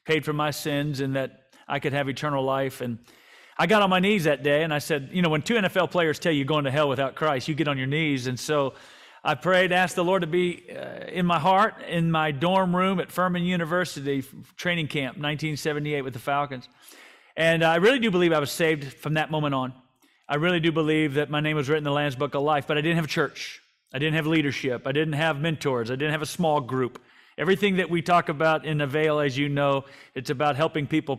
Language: English